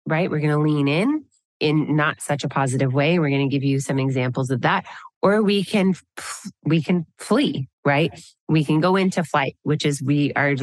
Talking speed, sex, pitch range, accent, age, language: 205 wpm, female, 140-175 Hz, American, 30-49, English